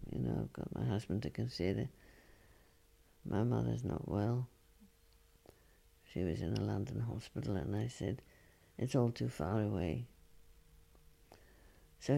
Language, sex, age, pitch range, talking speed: English, female, 60-79, 90-125 Hz, 135 wpm